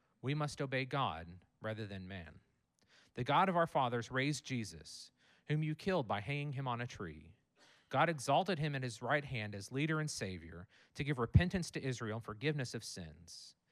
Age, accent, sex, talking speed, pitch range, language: 40-59, American, male, 190 wpm, 100-150 Hz, English